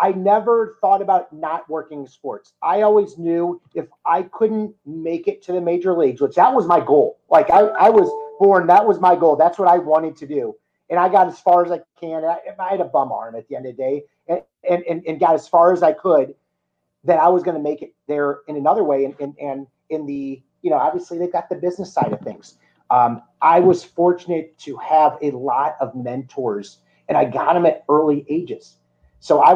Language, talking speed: English, 230 wpm